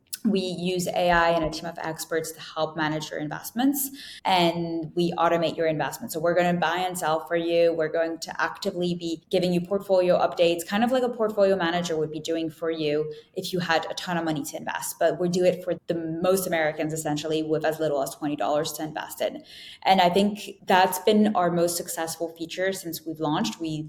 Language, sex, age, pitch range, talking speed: English, female, 10-29, 160-185 Hz, 215 wpm